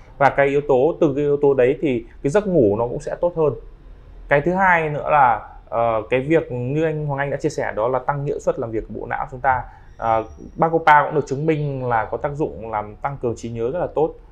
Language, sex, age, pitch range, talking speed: Vietnamese, male, 20-39, 120-165 Hz, 265 wpm